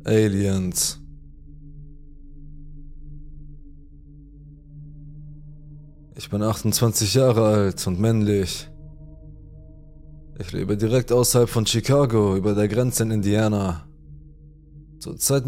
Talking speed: 80 wpm